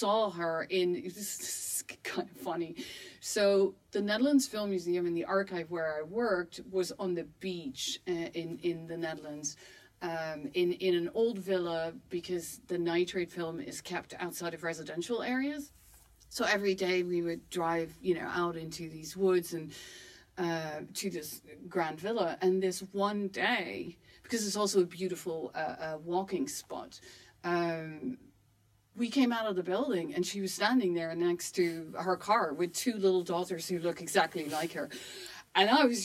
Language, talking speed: English, 175 wpm